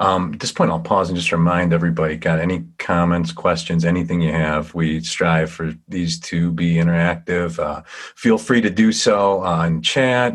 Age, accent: 40-59, American